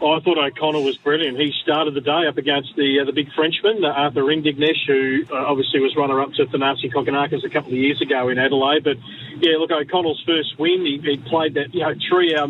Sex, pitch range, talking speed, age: male, 140-170 Hz, 225 wpm, 40-59